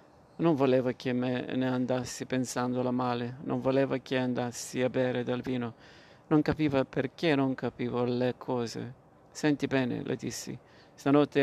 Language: Italian